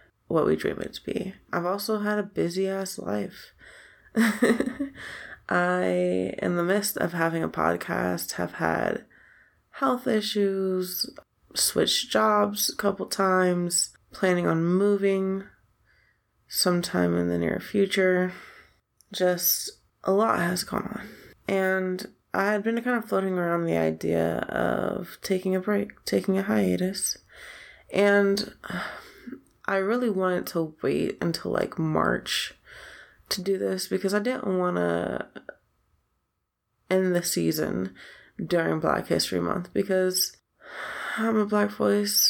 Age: 20-39